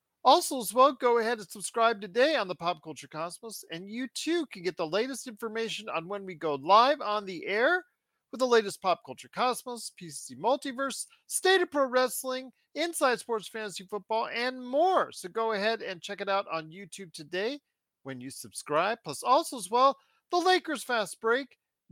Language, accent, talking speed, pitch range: English, American, 185 wpm, 170-255 Hz